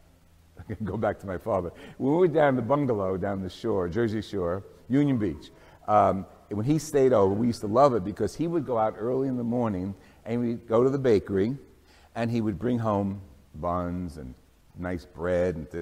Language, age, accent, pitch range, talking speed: English, 60-79, American, 95-140 Hz, 200 wpm